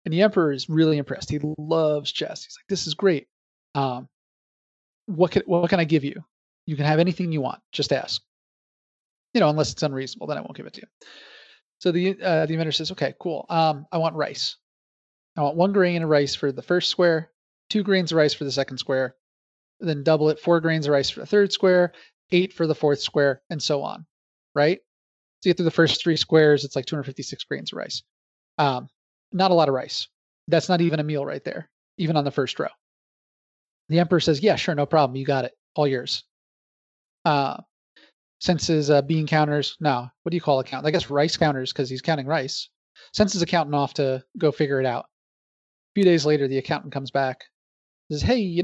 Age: 30-49